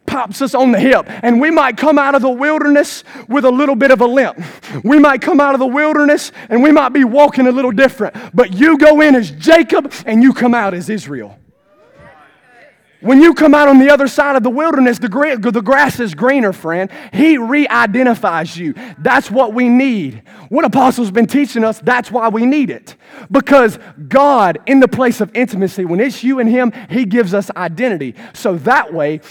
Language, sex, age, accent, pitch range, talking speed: English, male, 30-49, American, 195-270 Hz, 205 wpm